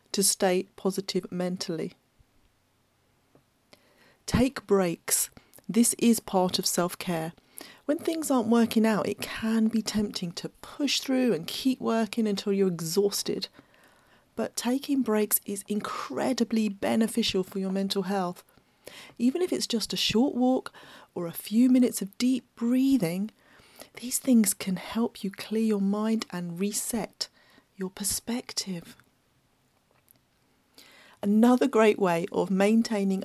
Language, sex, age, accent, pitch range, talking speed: English, female, 40-59, British, 190-230 Hz, 125 wpm